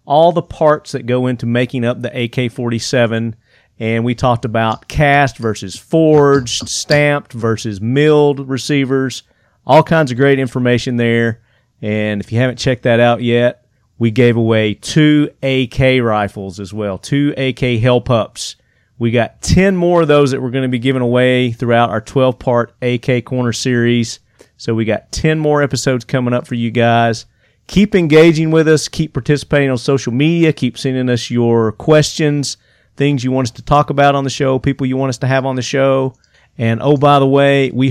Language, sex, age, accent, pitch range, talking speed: English, male, 40-59, American, 115-140 Hz, 180 wpm